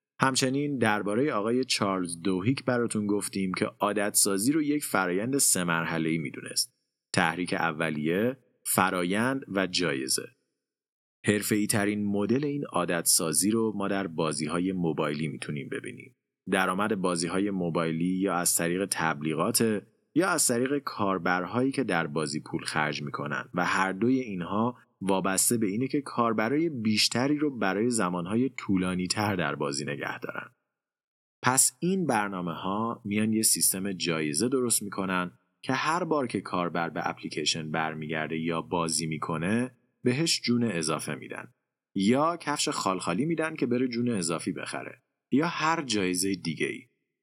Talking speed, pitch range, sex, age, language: 140 wpm, 85-120 Hz, male, 30-49, Persian